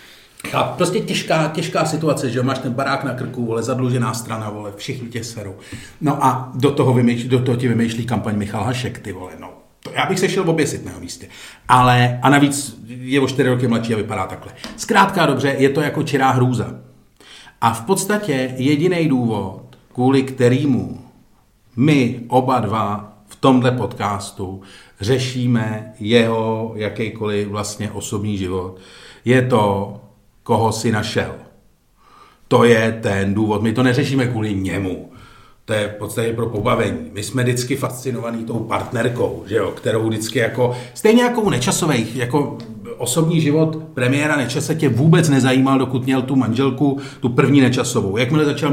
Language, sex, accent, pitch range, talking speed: Czech, male, native, 110-145 Hz, 155 wpm